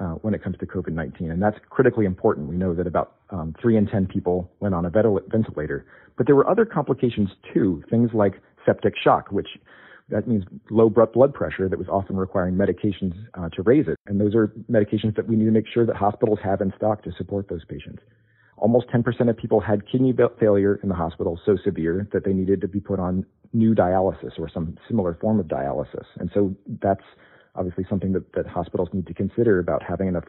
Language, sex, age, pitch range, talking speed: English, male, 40-59, 90-115 Hz, 215 wpm